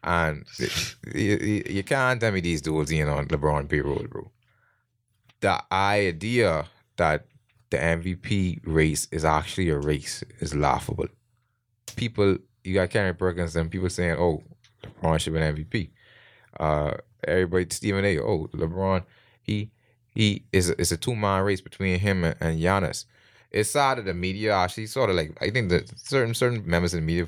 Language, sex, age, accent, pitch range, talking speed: English, male, 20-39, American, 85-115 Hz, 170 wpm